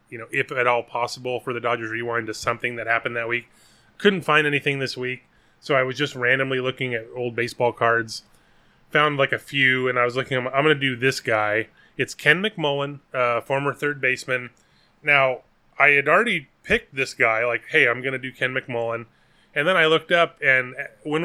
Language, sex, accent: English, male, American